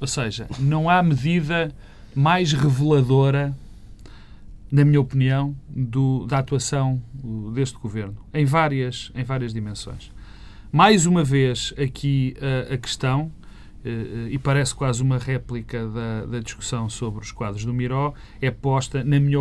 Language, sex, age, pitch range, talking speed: Portuguese, male, 40-59, 115-145 Hz, 135 wpm